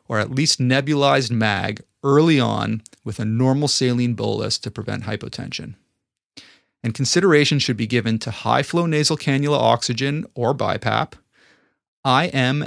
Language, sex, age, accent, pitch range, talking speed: English, male, 30-49, American, 115-135 Hz, 135 wpm